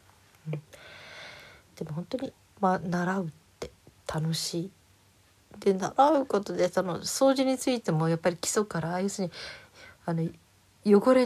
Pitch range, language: 160-205 Hz, Japanese